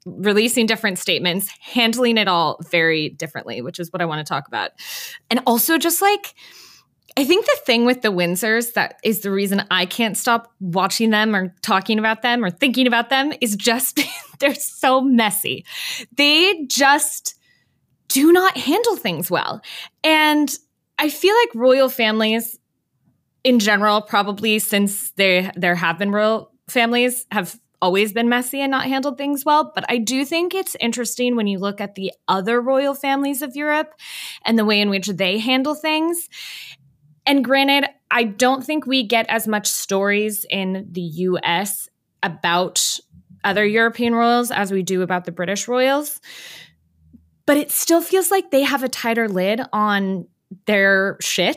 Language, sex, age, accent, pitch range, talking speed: English, female, 20-39, American, 195-275 Hz, 165 wpm